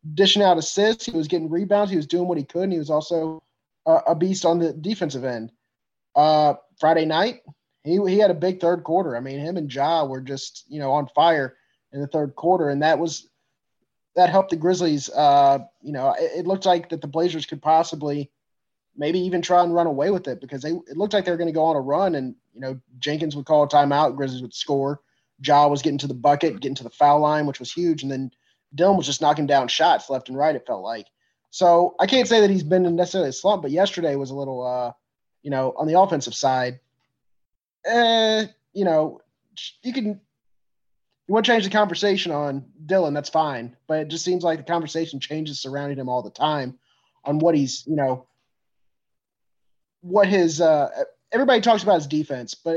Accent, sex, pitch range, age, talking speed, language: American, male, 140-180 Hz, 20-39, 215 wpm, English